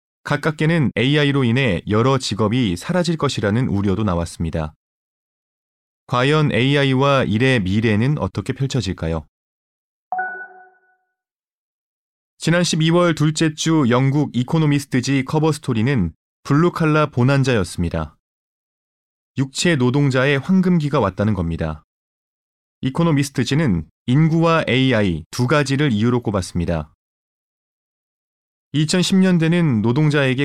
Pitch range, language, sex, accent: 110-155 Hz, Korean, male, native